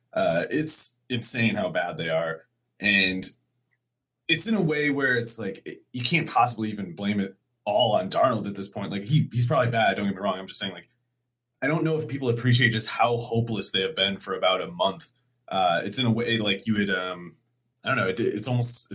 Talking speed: 225 wpm